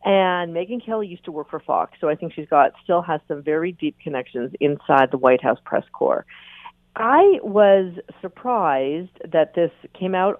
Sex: female